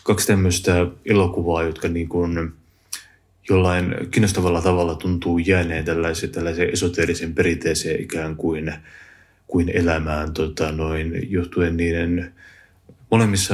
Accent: native